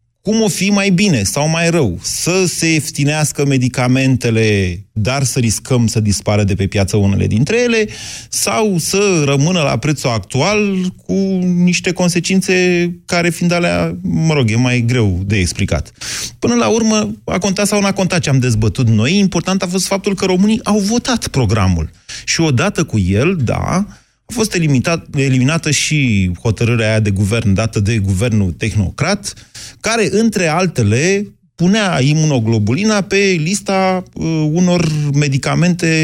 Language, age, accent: Romanian, 30-49, native